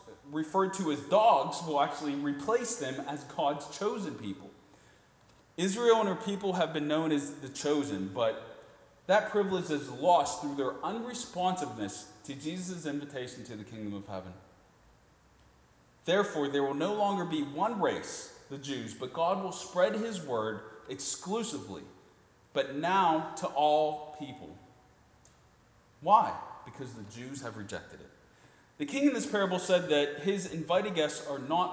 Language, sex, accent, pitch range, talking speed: English, male, American, 140-195 Hz, 150 wpm